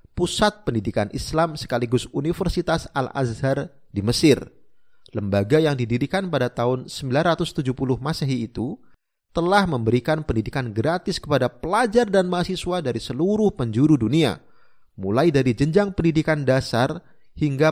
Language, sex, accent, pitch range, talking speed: Indonesian, male, native, 120-170 Hz, 115 wpm